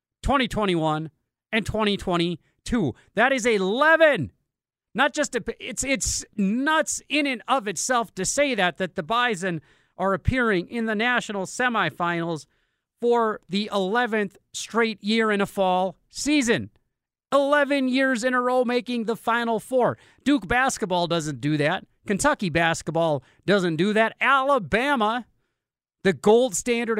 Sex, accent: male, American